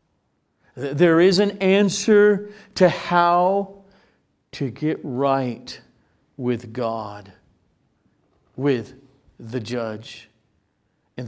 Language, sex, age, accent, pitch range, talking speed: English, male, 50-69, American, 125-200 Hz, 80 wpm